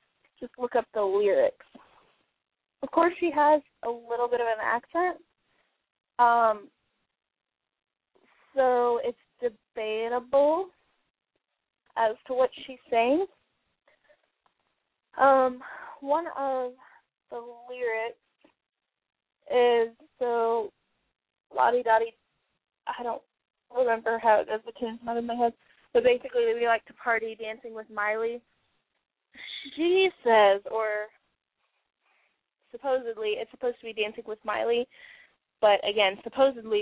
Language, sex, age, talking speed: English, female, 10-29, 110 wpm